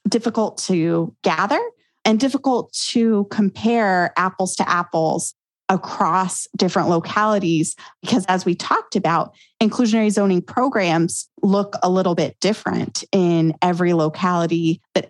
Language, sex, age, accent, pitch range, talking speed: English, female, 30-49, American, 175-205 Hz, 120 wpm